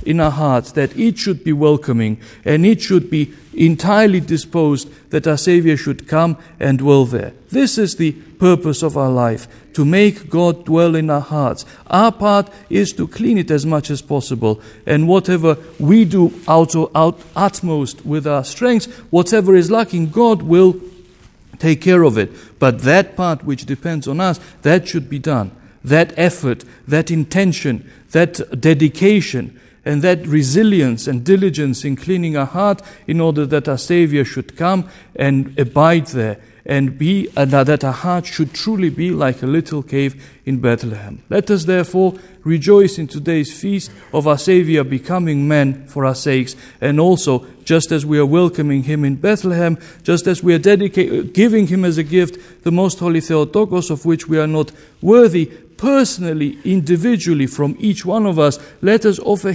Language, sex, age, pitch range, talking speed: English, male, 50-69, 140-180 Hz, 170 wpm